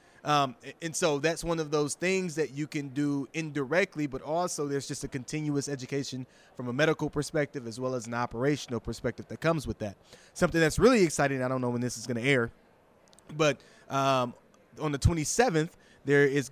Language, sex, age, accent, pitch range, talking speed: English, male, 20-39, American, 125-150 Hz, 195 wpm